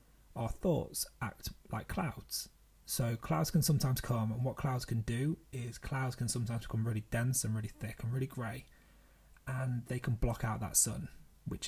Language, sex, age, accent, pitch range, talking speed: English, male, 30-49, British, 105-130 Hz, 185 wpm